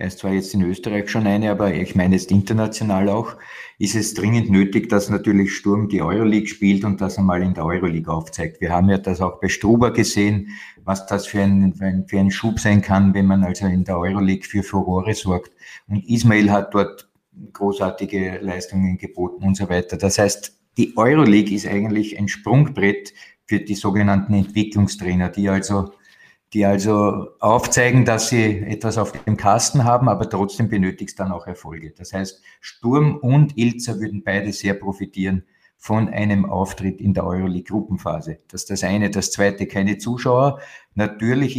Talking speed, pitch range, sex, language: 175 wpm, 95-110 Hz, male, German